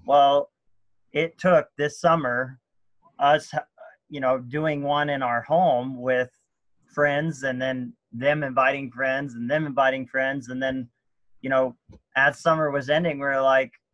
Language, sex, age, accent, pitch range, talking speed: English, male, 30-49, American, 130-145 Hz, 150 wpm